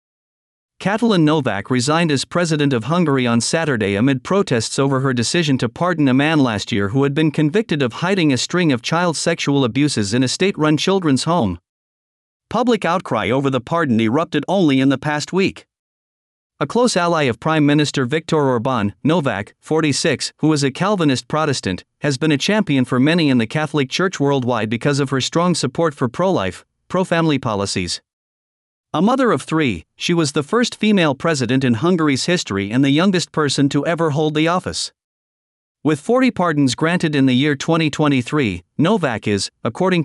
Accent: American